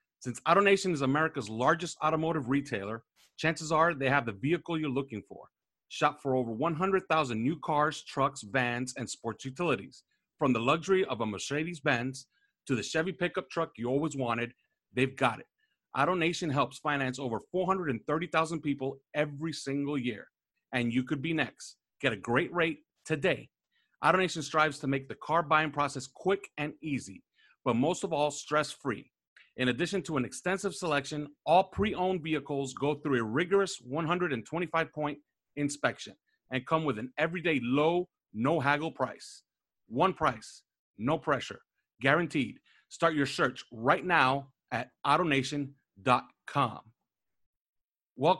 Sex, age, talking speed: male, 40-59, 145 wpm